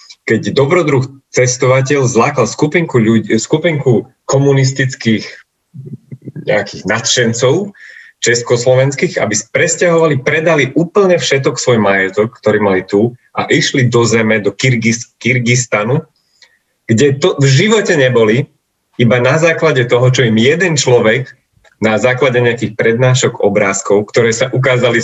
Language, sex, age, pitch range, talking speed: Slovak, male, 30-49, 110-135 Hz, 115 wpm